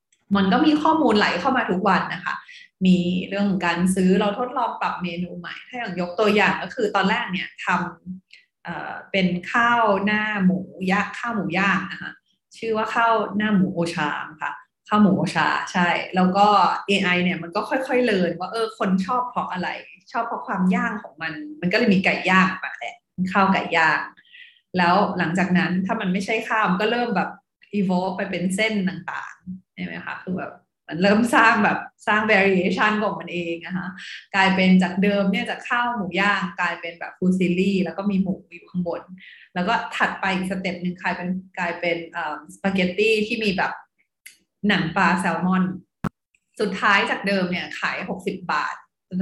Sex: female